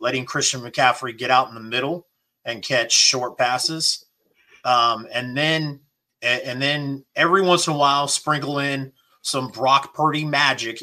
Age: 30-49